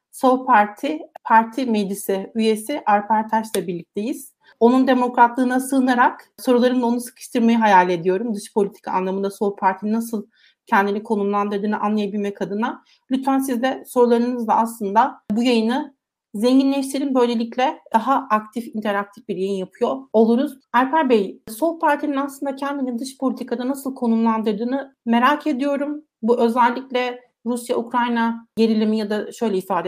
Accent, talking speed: native, 125 wpm